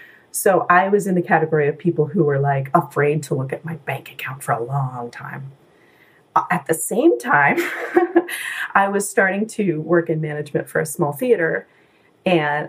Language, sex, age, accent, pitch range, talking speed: English, female, 30-49, American, 150-190 Hz, 180 wpm